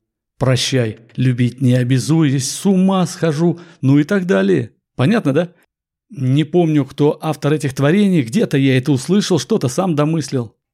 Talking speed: 145 wpm